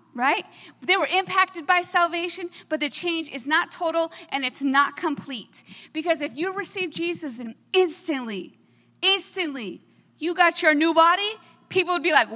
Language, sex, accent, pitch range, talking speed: English, female, American, 270-345 Hz, 160 wpm